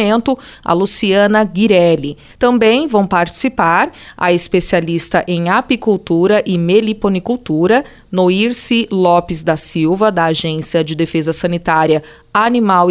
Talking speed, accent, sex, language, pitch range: 100 wpm, Brazilian, female, Portuguese, 180-235 Hz